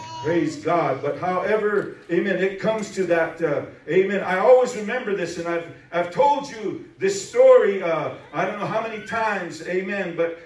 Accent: American